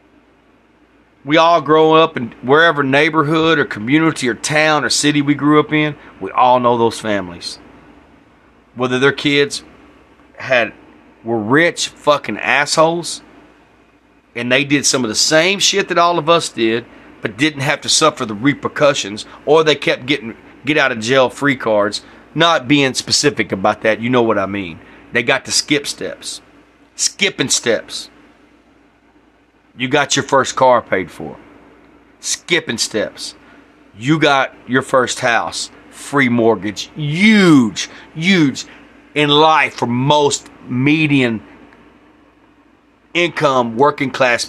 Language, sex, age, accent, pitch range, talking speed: English, male, 40-59, American, 115-150 Hz, 140 wpm